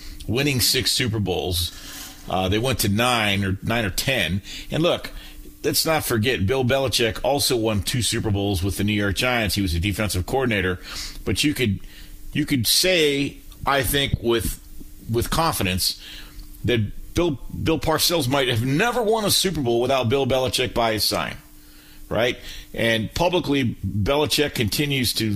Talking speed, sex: 165 wpm, male